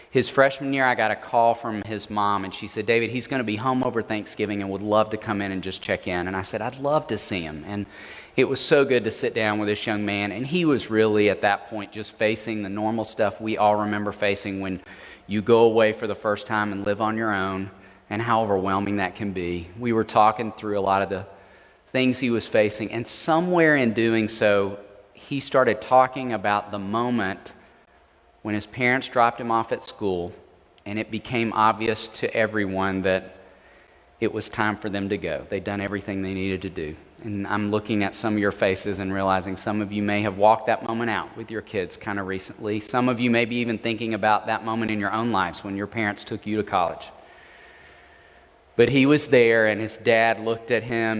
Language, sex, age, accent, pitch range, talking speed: English, male, 30-49, American, 100-115 Hz, 225 wpm